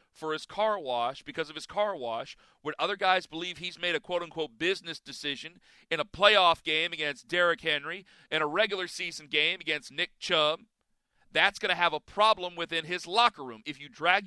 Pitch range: 145-185 Hz